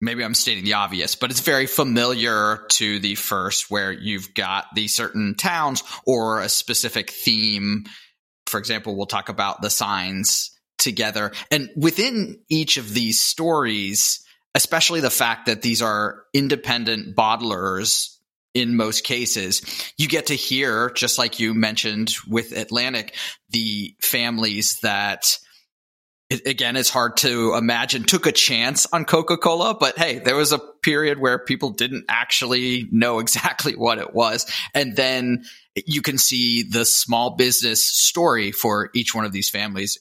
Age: 30-49